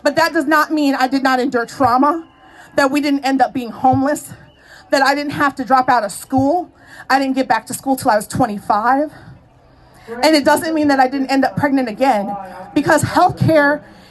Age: 30-49